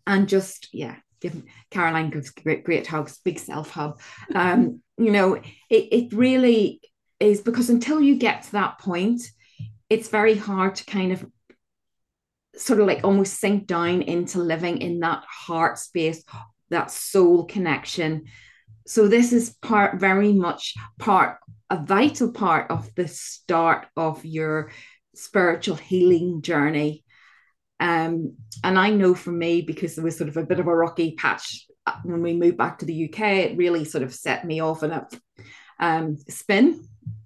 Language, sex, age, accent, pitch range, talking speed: English, female, 30-49, British, 160-200 Hz, 160 wpm